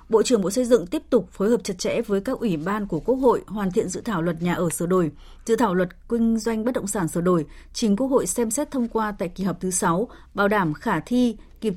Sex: female